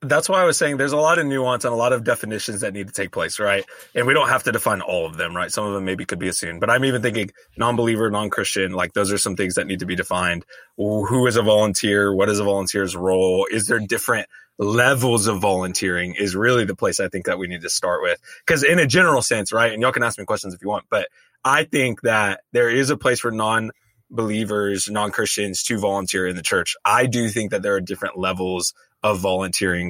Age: 20-39